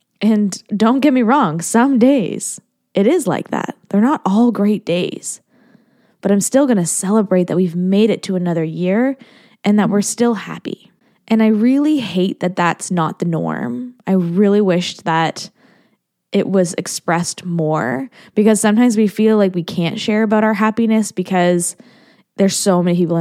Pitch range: 180-230 Hz